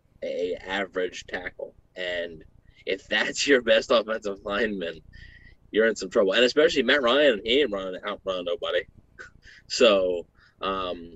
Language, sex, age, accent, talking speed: English, male, 20-39, American, 135 wpm